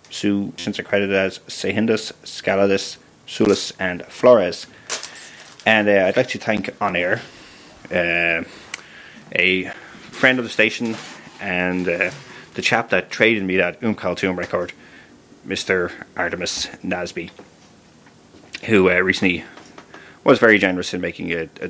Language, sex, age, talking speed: English, male, 30-49, 125 wpm